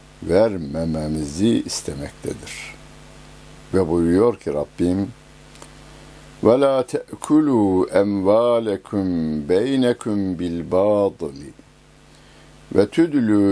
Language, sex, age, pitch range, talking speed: Turkish, male, 60-79, 80-110 Hz, 55 wpm